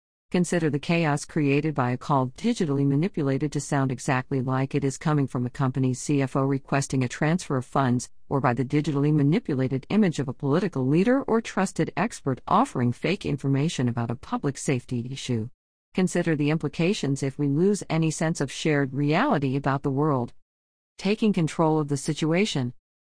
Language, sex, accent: English, female, American